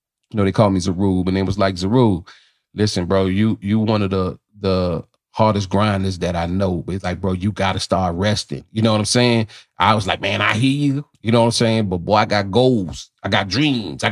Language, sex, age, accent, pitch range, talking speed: English, male, 30-49, American, 95-120 Hz, 245 wpm